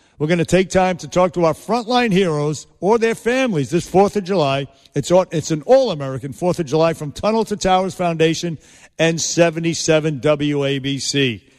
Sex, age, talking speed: male, 50-69, 175 wpm